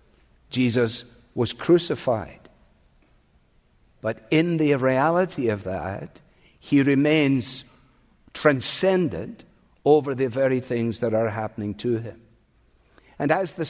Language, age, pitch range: English, 60-79, 115-150 Hz